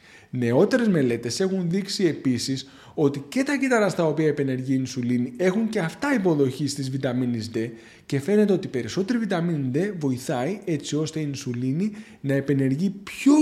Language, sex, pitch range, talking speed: Greek, male, 135-200 Hz, 155 wpm